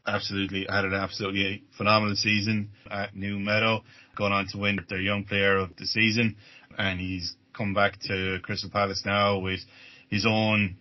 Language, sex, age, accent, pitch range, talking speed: English, male, 20-39, Irish, 95-110 Hz, 165 wpm